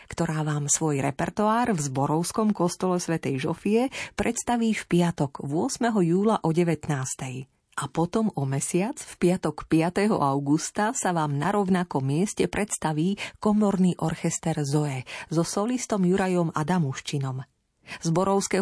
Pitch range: 160-205 Hz